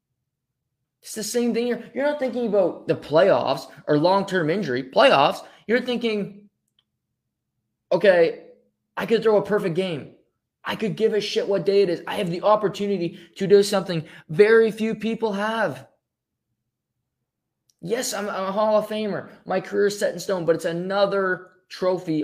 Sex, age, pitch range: male, 20-39, 140-205 Hz